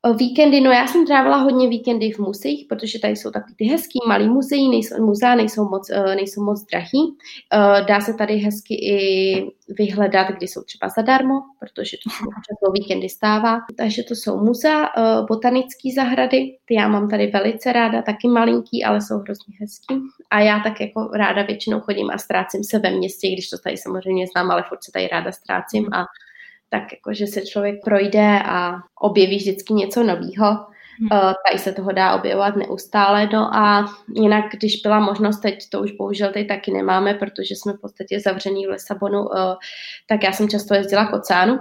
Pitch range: 195-225 Hz